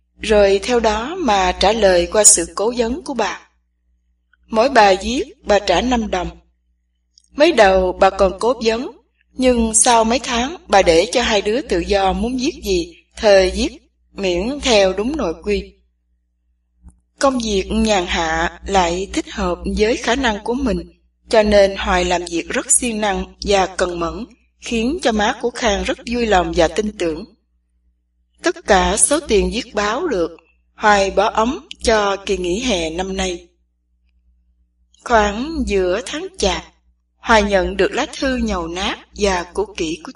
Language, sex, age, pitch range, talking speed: English, female, 20-39, 170-235 Hz, 165 wpm